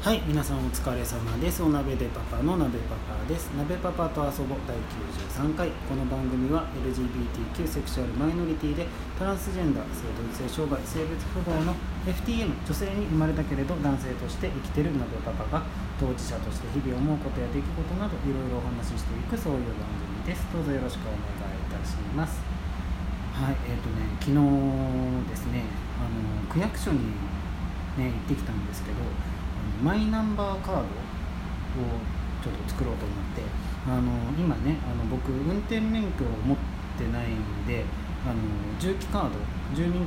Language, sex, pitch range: Japanese, male, 110-160 Hz